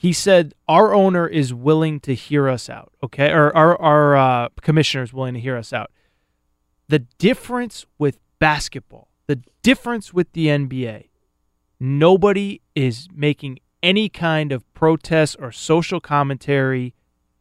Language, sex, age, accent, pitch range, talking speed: English, male, 30-49, American, 145-185 Hz, 140 wpm